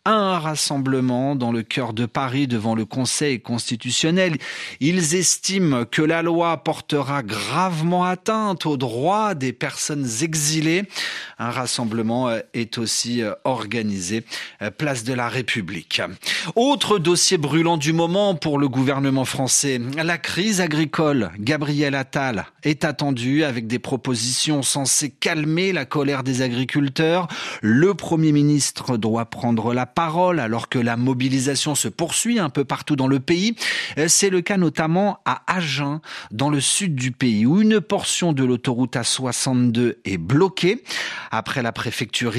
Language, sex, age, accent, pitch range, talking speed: French, male, 30-49, French, 125-170 Hz, 140 wpm